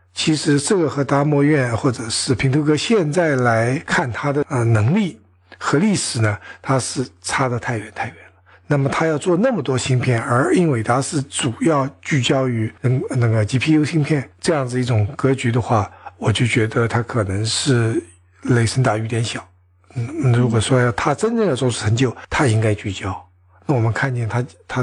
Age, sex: 60-79, male